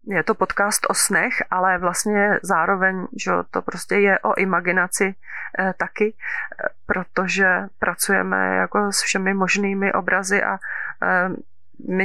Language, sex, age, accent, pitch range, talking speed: Czech, female, 30-49, native, 185-205 Hz, 120 wpm